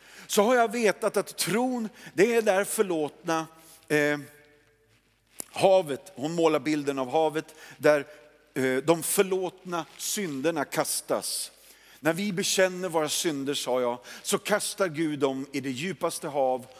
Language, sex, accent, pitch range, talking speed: Swedish, male, native, 130-185 Hz, 135 wpm